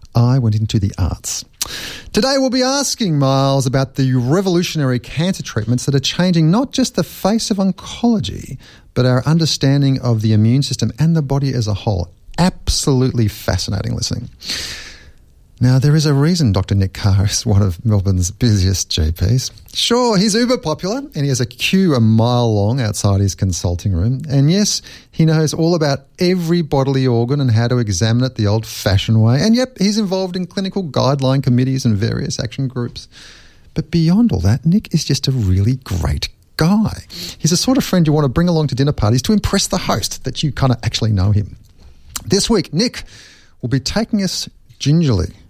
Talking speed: 185 wpm